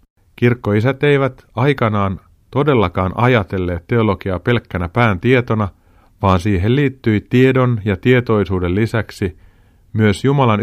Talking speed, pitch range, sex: 100 wpm, 90-120 Hz, male